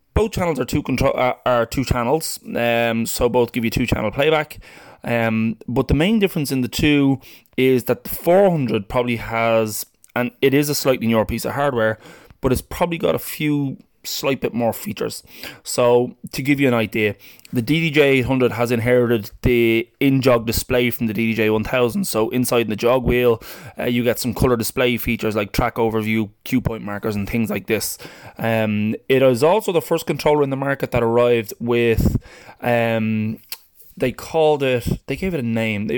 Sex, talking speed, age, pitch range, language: male, 185 wpm, 20-39, 115-135 Hz, English